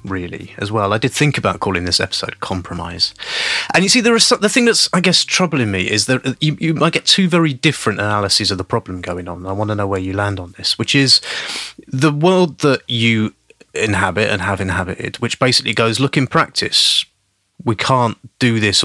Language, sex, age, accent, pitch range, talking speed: English, male, 30-49, British, 95-130 Hz, 210 wpm